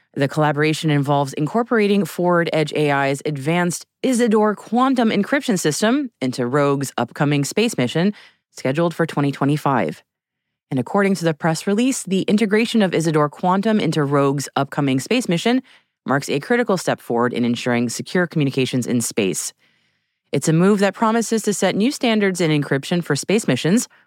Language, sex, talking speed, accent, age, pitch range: English, female, 150 wpm, American, 30-49, 145-225 Hz